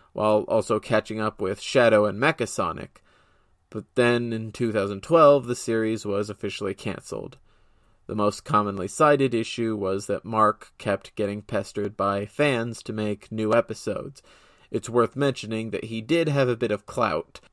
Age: 30-49